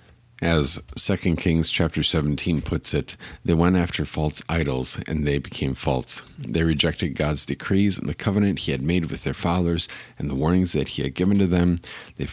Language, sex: English, male